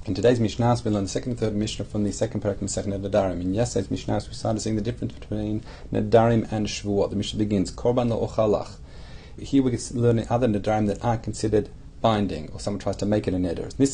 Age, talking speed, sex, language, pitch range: 40-59, 235 wpm, male, English, 105-125 Hz